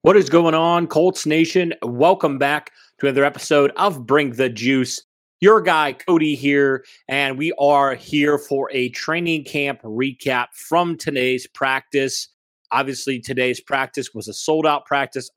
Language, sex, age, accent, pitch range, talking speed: English, male, 30-49, American, 125-155 Hz, 150 wpm